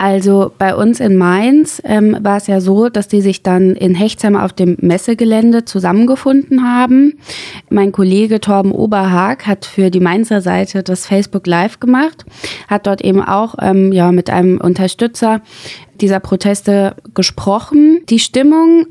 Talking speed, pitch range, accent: 150 wpm, 185-240 Hz, German